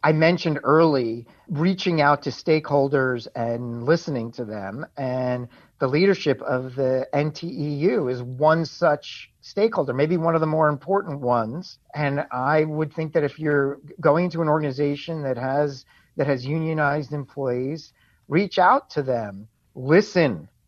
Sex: male